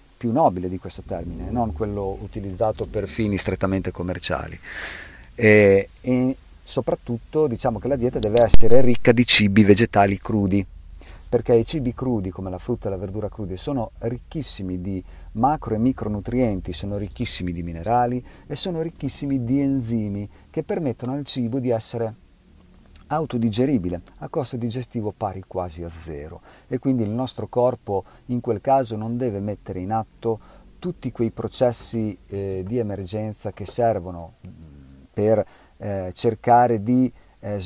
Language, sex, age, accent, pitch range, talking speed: English, male, 40-59, Italian, 95-120 Hz, 145 wpm